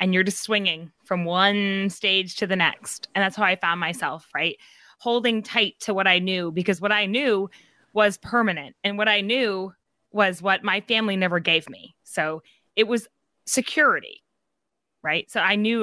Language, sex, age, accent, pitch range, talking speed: English, female, 20-39, American, 185-235 Hz, 180 wpm